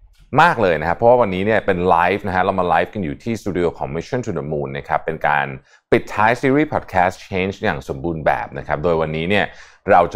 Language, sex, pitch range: Thai, male, 80-110 Hz